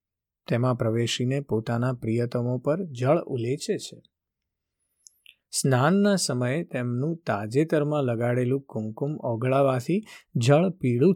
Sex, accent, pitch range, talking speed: male, native, 115-140 Hz, 55 wpm